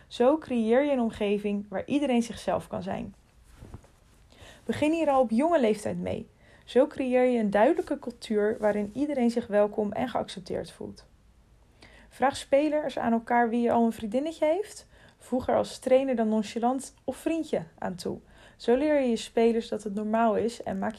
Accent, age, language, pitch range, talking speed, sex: Dutch, 20-39, Dutch, 215-260 Hz, 175 wpm, female